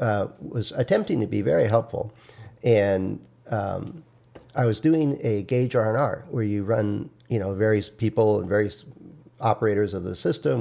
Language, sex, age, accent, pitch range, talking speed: English, male, 50-69, American, 100-120 Hz, 160 wpm